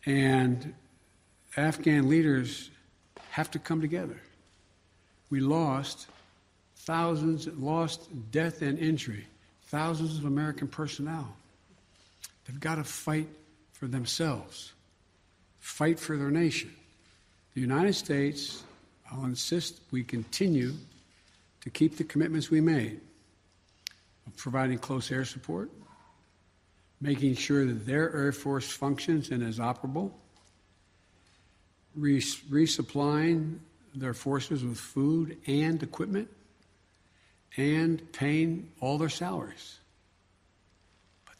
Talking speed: 100 wpm